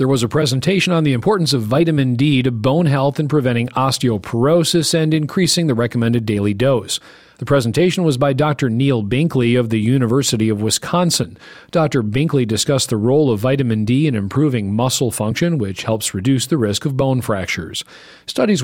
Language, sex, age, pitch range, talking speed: English, male, 40-59, 115-150 Hz, 175 wpm